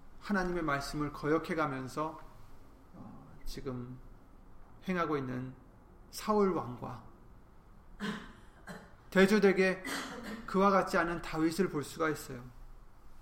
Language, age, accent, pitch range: Korean, 30-49, native, 130-180 Hz